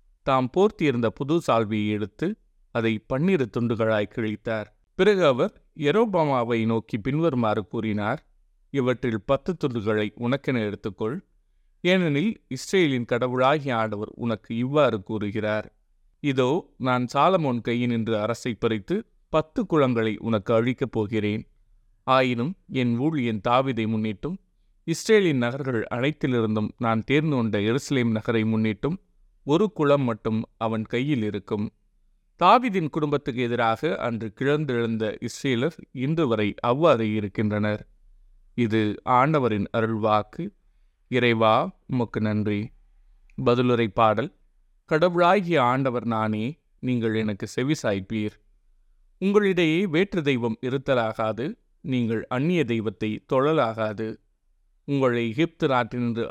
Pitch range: 110-140 Hz